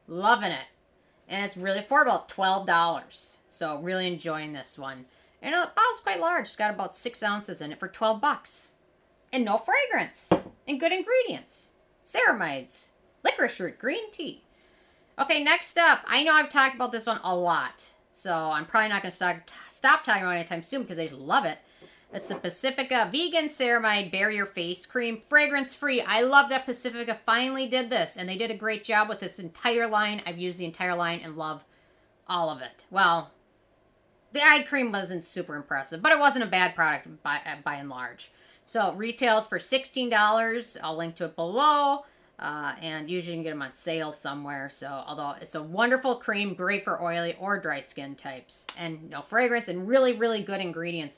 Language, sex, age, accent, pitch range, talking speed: English, female, 40-59, American, 170-245 Hz, 195 wpm